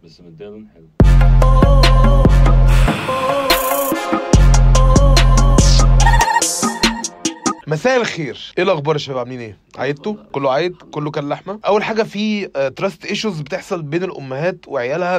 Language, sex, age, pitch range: Arabic, male, 20-39, 140-185 Hz